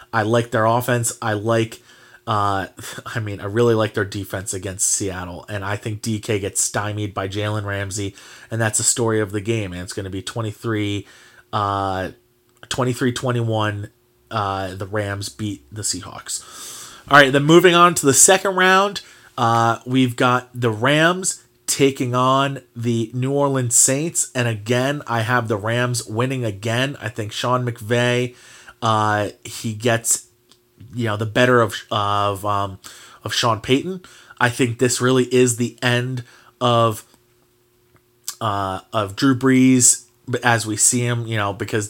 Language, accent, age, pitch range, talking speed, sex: English, American, 30-49, 105-125 Hz, 155 wpm, male